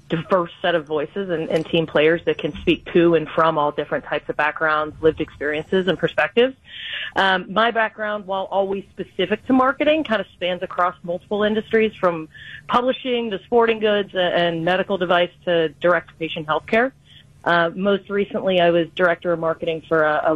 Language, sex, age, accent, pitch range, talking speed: English, female, 40-59, American, 160-195 Hz, 180 wpm